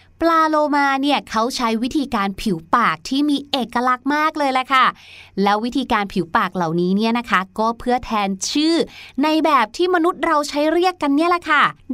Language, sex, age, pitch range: Thai, female, 20-39, 215-290 Hz